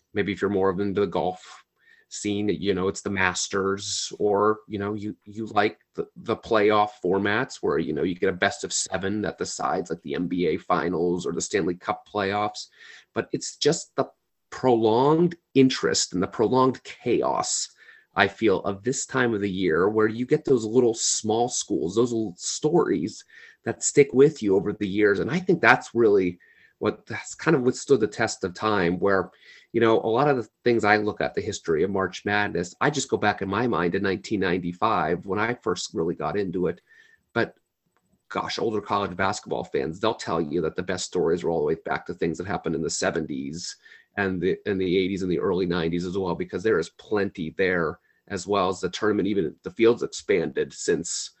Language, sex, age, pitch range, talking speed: English, male, 30-49, 95-120 Hz, 205 wpm